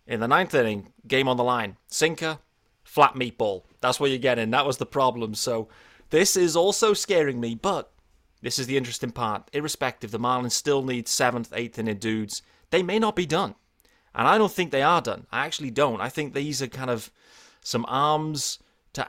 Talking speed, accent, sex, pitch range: 200 wpm, British, male, 110-135 Hz